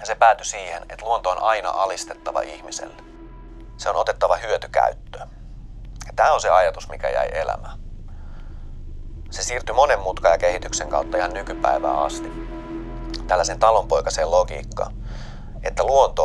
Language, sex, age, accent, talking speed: Finnish, male, 30-49, native, 135 wpm